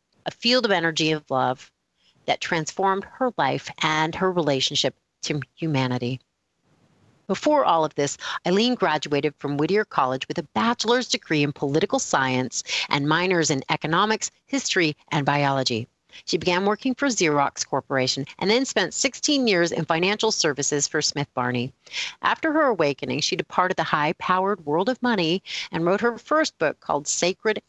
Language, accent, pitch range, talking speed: English, American, 145-210 Hz, 155 wpm